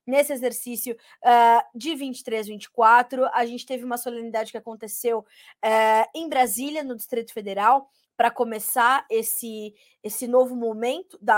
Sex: female